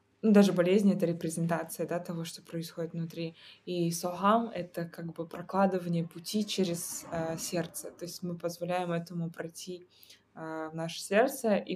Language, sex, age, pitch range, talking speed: Russian, female, 20-39, 170-205 Hz, 170 wpm